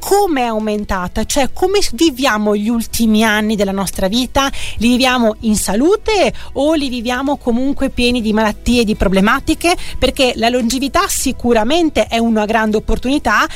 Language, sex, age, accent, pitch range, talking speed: Italian, female, 40-59, native, 220-285 Hz, 145 wpm